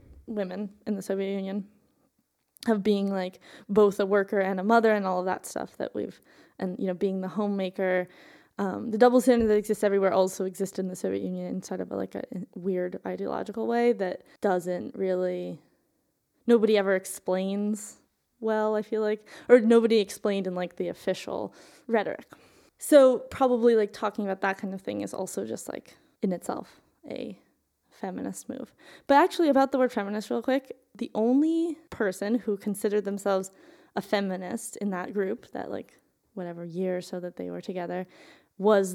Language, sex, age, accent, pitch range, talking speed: English, female, 20-39, American, 190-225 Hz, 175 wpm